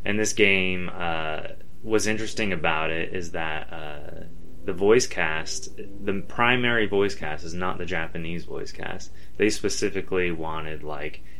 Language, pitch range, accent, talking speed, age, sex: English, 80-100 Hz, American, 145 wpm, 20-39, male